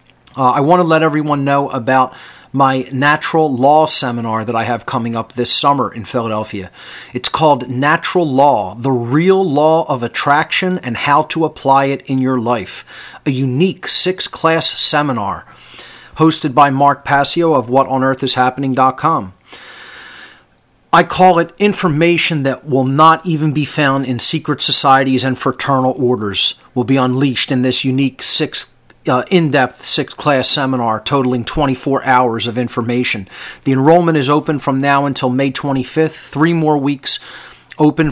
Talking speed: 150 wpm